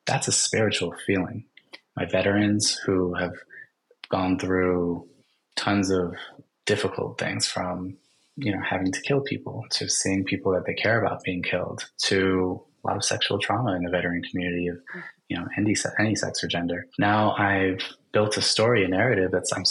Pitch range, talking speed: 90-105 Hz, 170 wpm